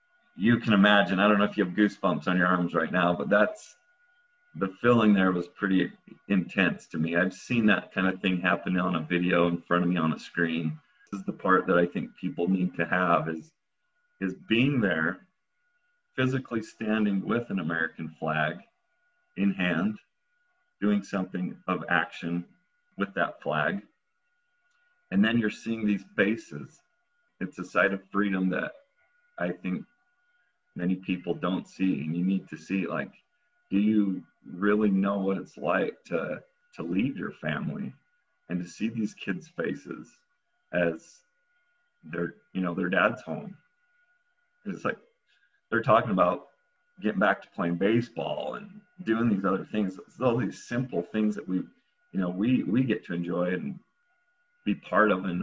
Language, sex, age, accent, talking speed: English, male, 40-59, American, 170 wpm